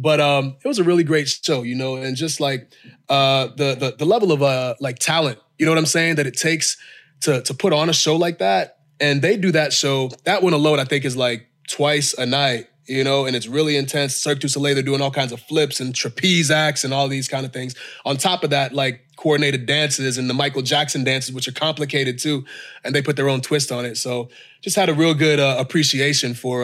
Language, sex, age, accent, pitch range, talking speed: English, male, 20-39, American, 130-155 Hz, 250 wpm